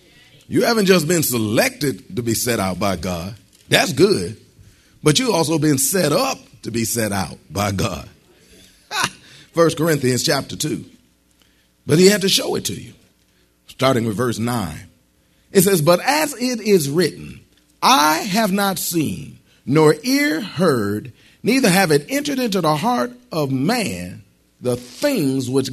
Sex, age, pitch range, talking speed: male, 40-59, 115-190 Hz, 155 wpm